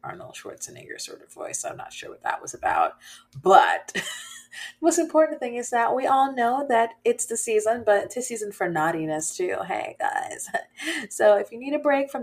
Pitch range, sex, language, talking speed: 155-240 Hz, female, English, 205 wpm